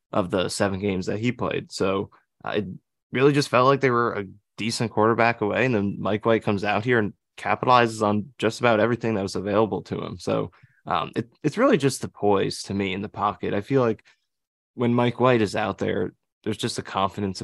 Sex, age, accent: male, 20-39, American